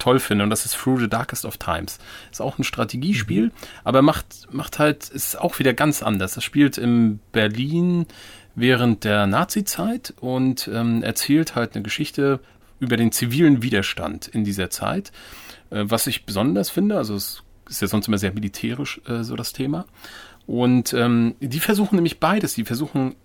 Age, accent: 30-49, German